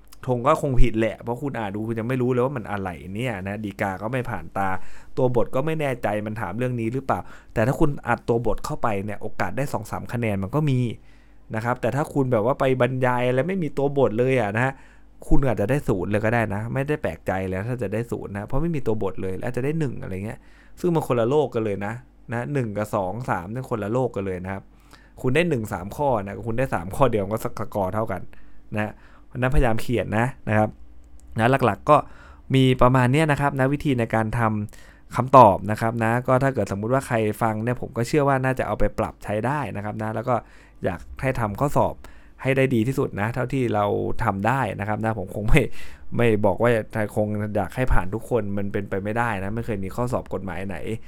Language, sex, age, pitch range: Thai, male, 20-39, 105-130 Hz